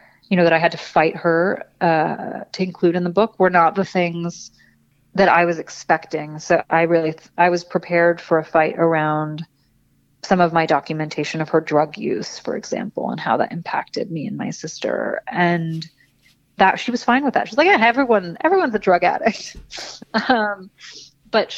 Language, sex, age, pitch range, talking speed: English, female, 30-49, 165-190 Hz, 190 wpm